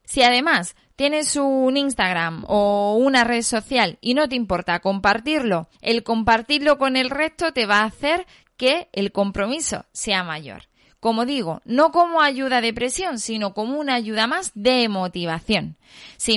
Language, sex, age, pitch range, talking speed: Spanish, female, 20-39, 200-270 Hz, 160 wpm